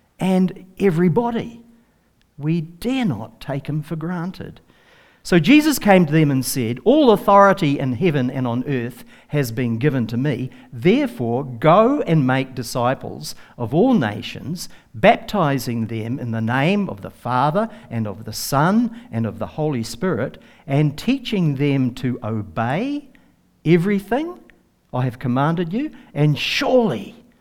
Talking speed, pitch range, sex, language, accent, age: 140 wpm, 125-195 Hz, male, English, Australian, 50-69